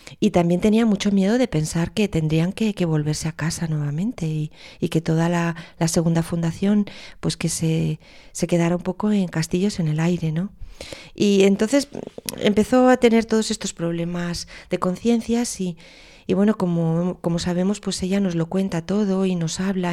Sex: female